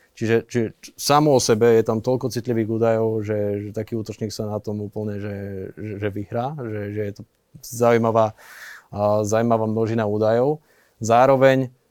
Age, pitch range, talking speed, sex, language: 20-39, 110-125 Hz, 155 wpm, male, Slovak